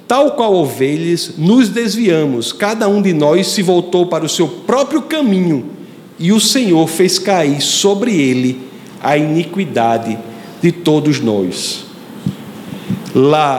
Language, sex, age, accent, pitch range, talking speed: Portuguese, male, 50-69, Brazilian, 155-205 Hz, 130 wpm